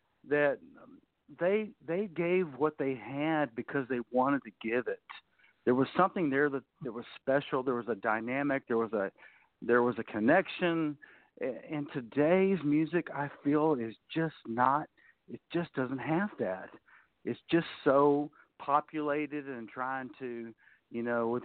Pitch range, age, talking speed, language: 120-155 Hz, 50-69, 155 wpm, English